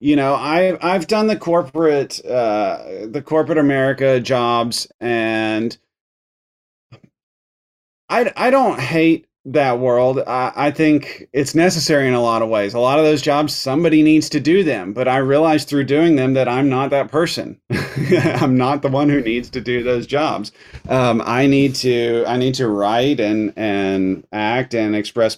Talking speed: 175 wpm